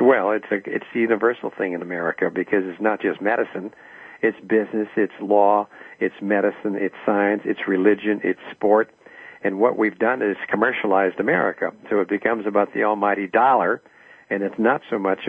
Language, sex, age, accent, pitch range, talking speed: English, male, 60-79, American, 100-115 Hz, 175 wpm